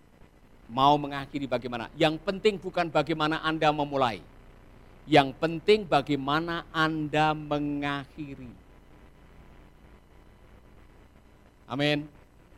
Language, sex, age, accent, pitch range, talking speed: Indonesian, male, 50-69, native, 140-220 Hz, 70 wpm